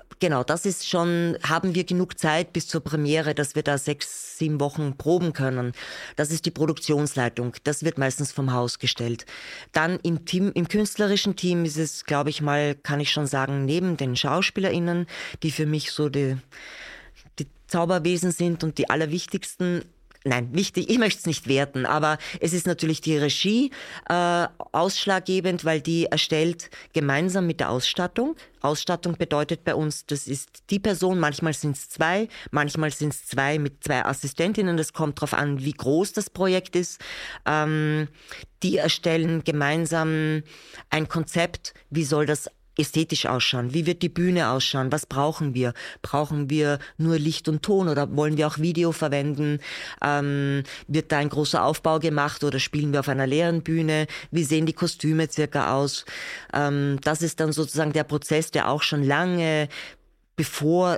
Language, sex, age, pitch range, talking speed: German, female, 20-39, 145-170 Hz, 165 wpm